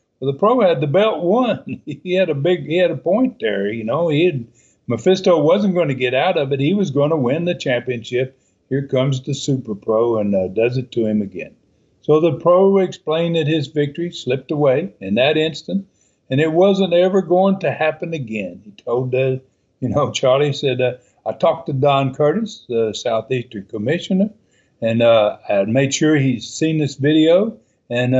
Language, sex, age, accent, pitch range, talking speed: English, male, 60-79, American, 125-170 Hz, 200 wpm